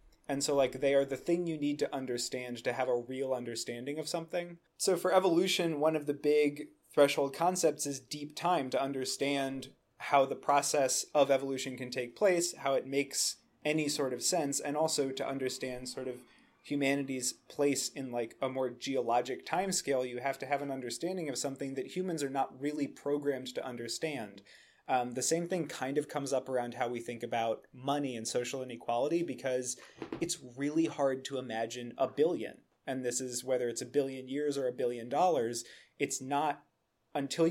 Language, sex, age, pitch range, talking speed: English, male, 30-49, 125-150 Hz, 190 wpm